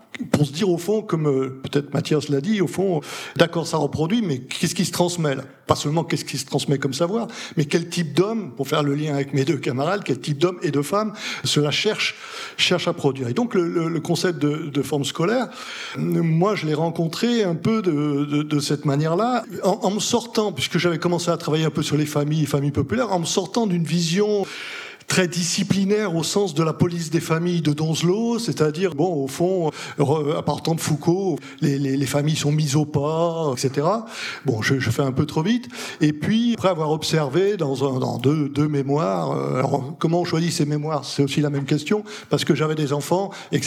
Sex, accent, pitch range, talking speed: male, French, 145-180 Hz, 220 wpm